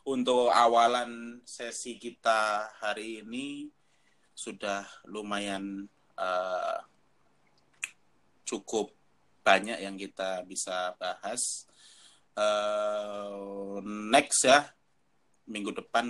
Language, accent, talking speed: Indonesian, native, 75 wpm